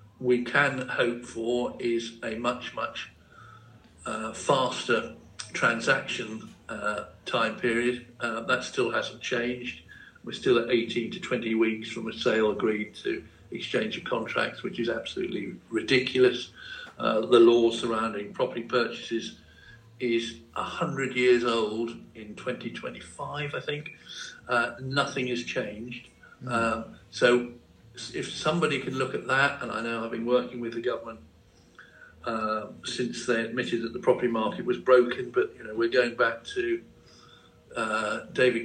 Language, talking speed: English, 145 wpm